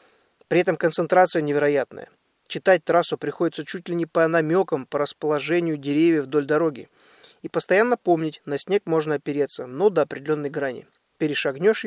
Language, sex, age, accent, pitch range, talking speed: Russian, male, 20-39, native, 150-190 Hz, 145 wpm